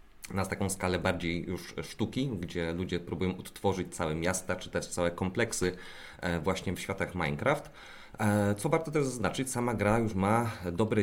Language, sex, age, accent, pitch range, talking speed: Polish, male, 30-49, native, 85-100 Hz, 160 wpm